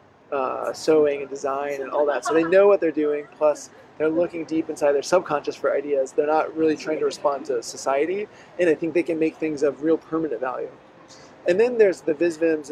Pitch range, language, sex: 150-185 Hz, Chinese, male